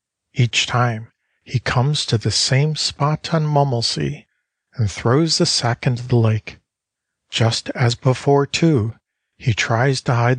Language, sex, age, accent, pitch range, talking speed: English, male, 50-69, American, 115-140 Hz, 145 wpm